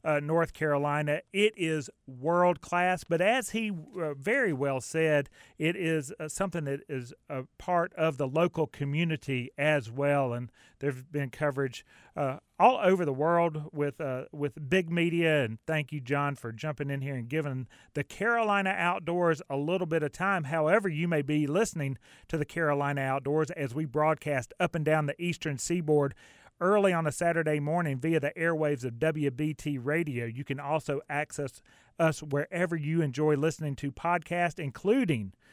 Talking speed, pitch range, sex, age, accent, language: 170 wpm, 140-170 Hz, male, 40-59, American, English